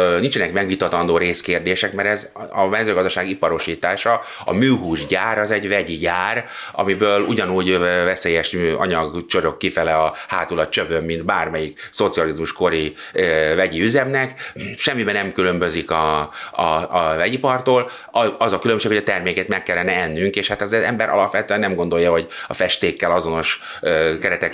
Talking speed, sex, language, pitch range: 140 wpm, male, Hungarian, 85-105 Hz